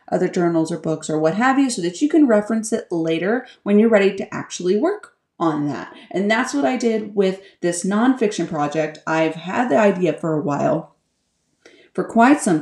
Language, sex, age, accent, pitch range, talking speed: English, female, 30-49, American, 175-245 Hz, 200 wpm